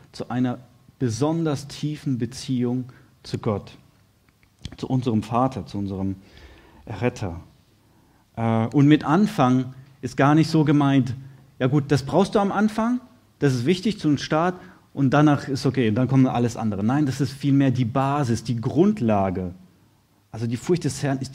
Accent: German